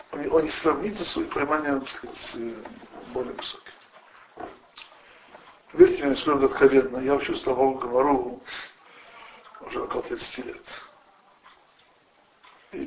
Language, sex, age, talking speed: Russian, male, 60-79, 95 wpm